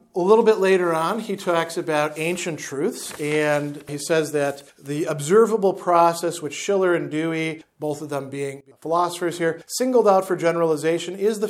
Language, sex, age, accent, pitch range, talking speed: English, male, 40-59, American, 150-185 Hz, 170 wpm